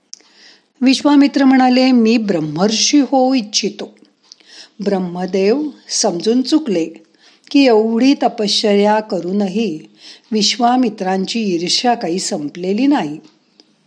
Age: 50-69